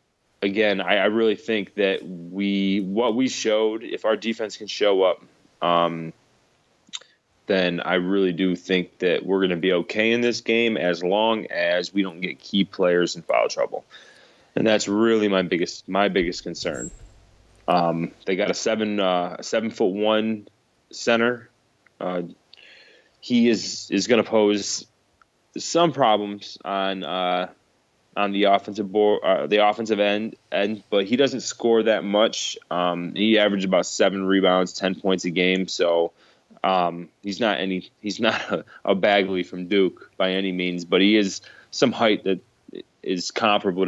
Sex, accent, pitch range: male, American, 90-110 Hz